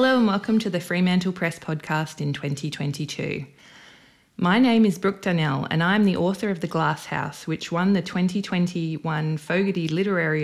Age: 20-39